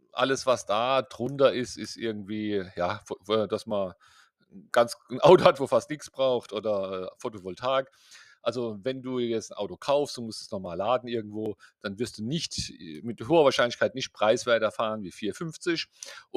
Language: German